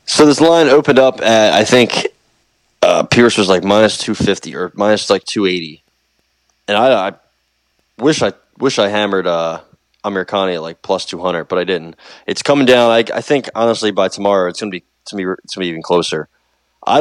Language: English